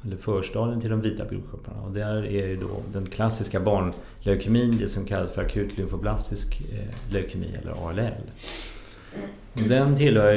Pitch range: 95-115 Hz